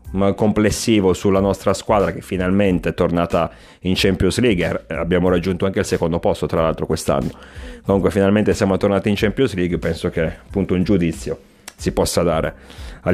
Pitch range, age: 85-105 Hz, 30-49